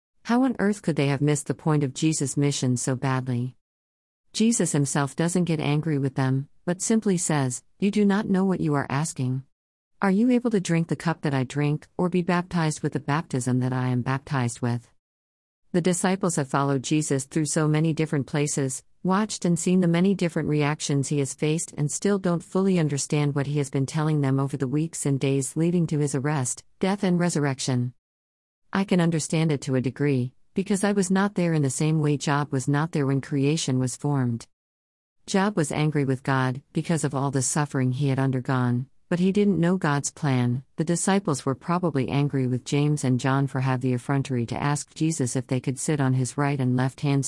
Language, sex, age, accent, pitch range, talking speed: English, female, 50-69, American, 130-165 Hz, 210 wpm